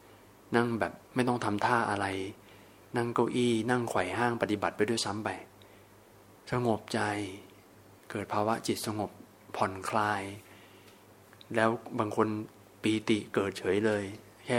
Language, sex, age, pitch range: Thai, male, 20-39, 95-110 Hz